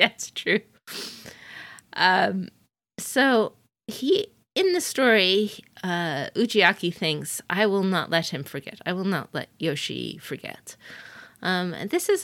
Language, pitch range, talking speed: English, 160-210 Hz, 130 wpm